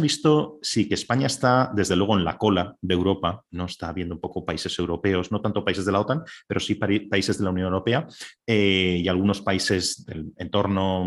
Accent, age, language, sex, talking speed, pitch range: Spanish, 30-49, Spanish, male, 205 wpm, 95-120 Hz